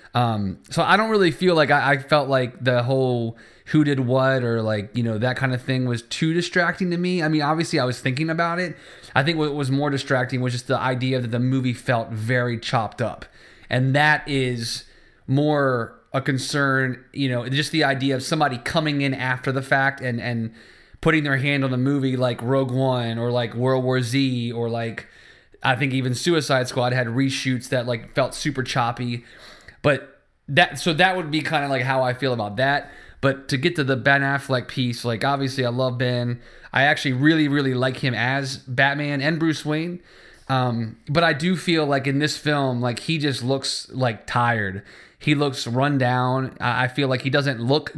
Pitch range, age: 125-145 Hz, 20-39